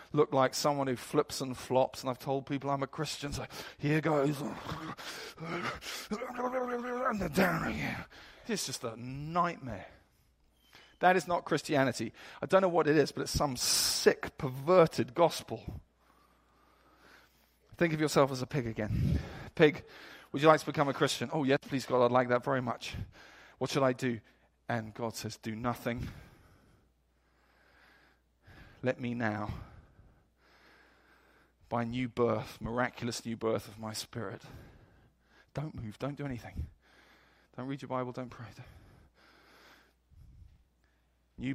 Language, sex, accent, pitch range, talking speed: English, male, British, 110-140 Hz, 140 wpm